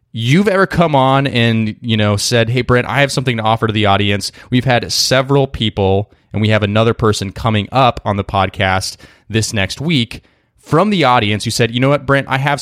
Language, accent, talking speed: English, American, 220 wpm